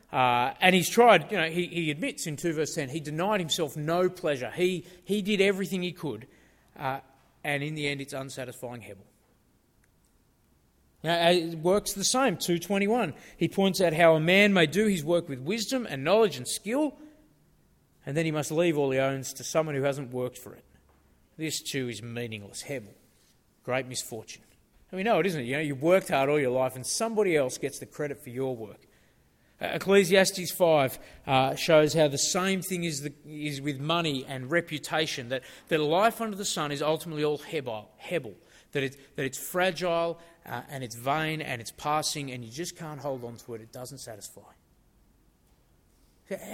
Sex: male